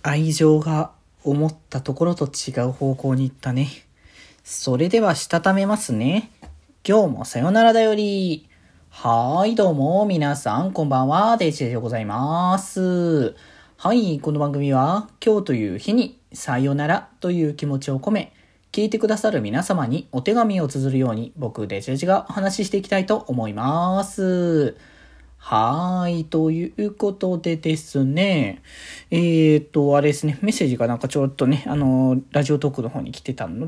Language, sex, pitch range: Japanese, male, 135-195 Hz